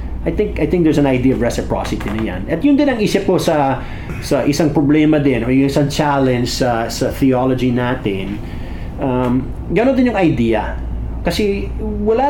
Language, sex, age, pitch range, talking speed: Filipino, male, 30-49, 115-155 Hz, 175 wpm